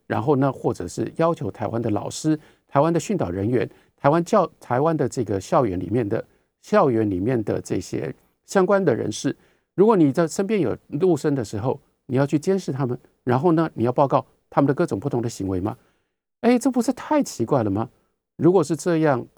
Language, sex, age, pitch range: Chinese, male, 50-69, 115-175 Hz